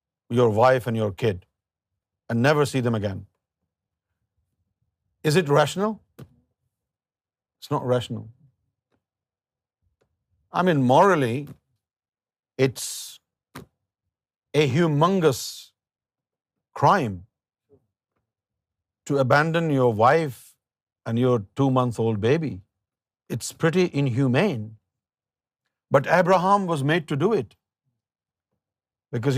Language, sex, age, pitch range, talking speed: Urdu, male, 50-69, 110-160 Hz, 85 wpm